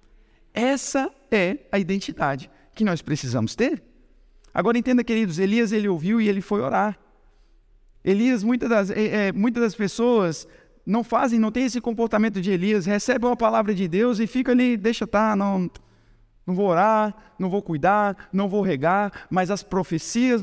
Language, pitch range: Portuguese, 140-225 Hz